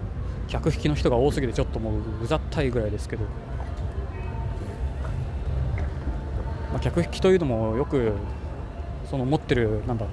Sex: male